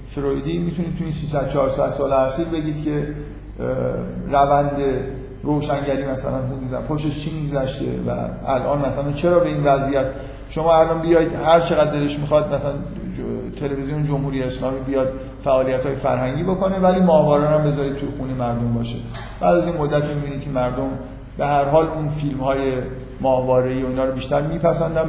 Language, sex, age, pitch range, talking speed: Persian, male, 50-69, 125-150 Hz, 155 wpm